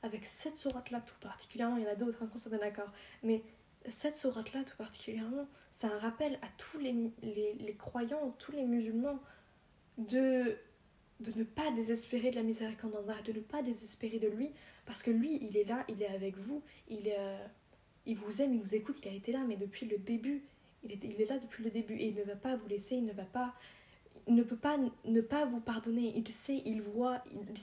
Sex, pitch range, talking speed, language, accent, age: female, 215-245 Hz, 230 wpm, French, French, 20-39